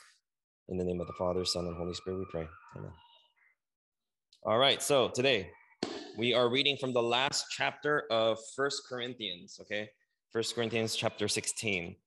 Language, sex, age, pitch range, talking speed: English, male, 20-39, 110-140 Hz, 160 wpm